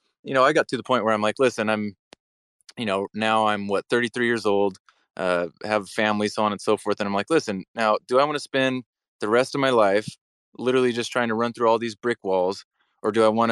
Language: English